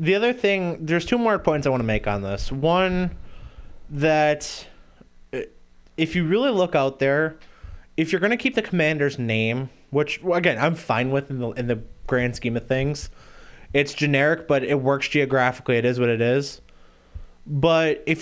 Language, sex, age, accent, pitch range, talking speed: English, male, 20-39, American, 120-160 Hz, 180 wpm